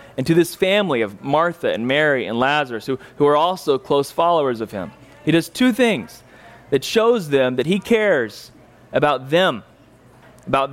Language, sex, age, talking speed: English, male, 30-49, 175 wpm